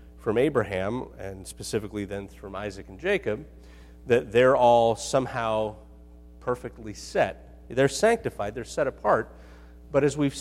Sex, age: male, 40-59